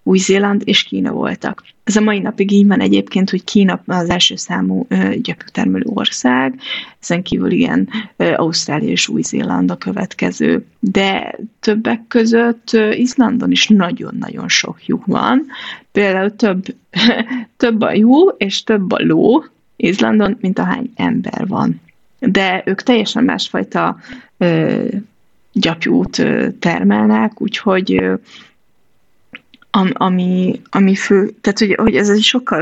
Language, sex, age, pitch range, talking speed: Hungarian, female, 30-49, 185-230 Hz, 120 wpm